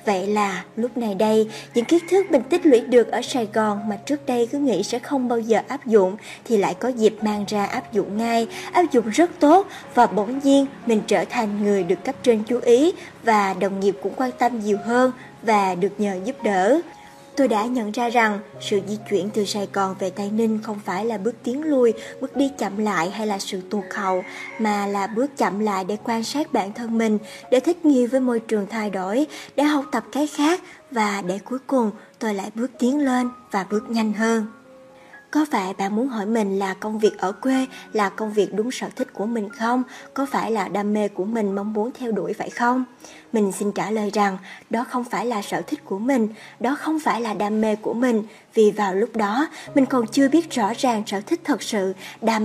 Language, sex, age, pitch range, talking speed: Vietnamese, male, 20-39, 205-255 Hz, 230 wpm